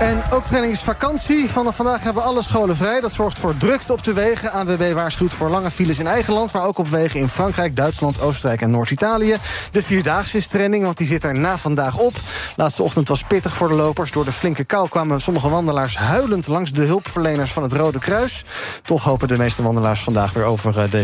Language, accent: Dutch, Dutch